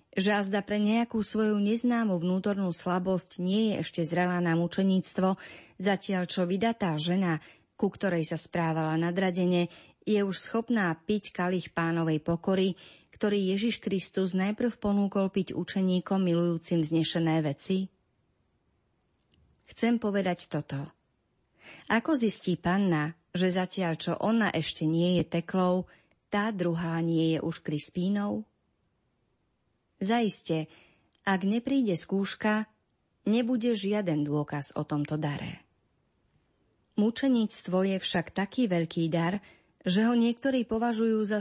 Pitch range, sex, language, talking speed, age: 170-210 Hz, female, Slovak, 115 wpm, 30-49